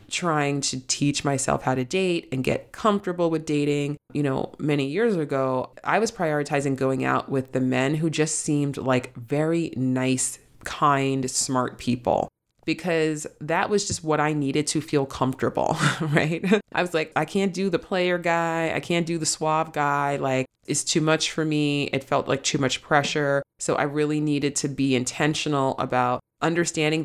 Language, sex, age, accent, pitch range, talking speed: English, female, 30-49, American, 135-155 Hz, 180 wpm